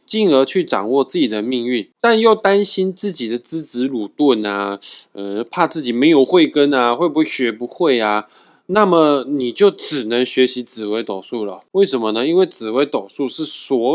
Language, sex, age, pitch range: Chinese, male, 20-39, 115-185 Hz